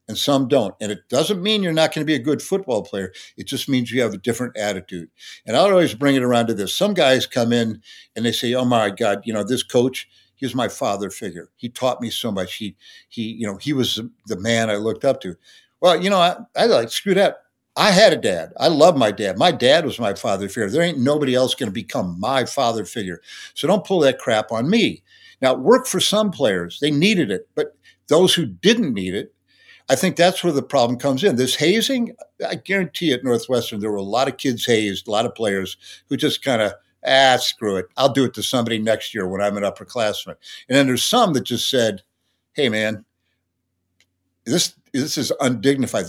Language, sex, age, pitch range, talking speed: English, male, 60-79, 105-150 Hz, 230 wpm